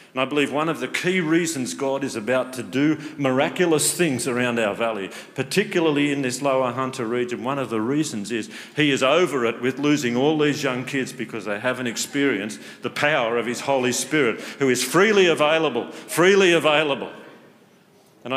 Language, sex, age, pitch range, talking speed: English, male, 50-69, 115-150 Hz, 185 wpm